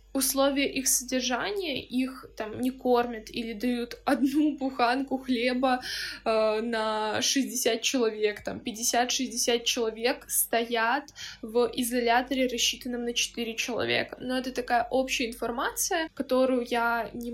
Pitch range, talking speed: 235-260 Hz, 120 wpm